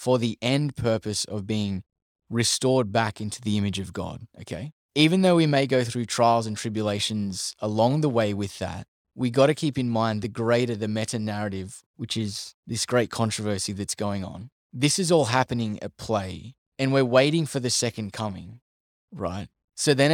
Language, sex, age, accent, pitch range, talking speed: English, male, 20-39, Australian, 105-125 Hz, 185 wpm